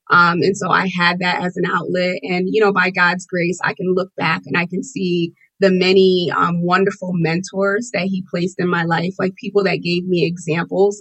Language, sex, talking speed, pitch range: English, female, 220 wpm, 175-200 Hz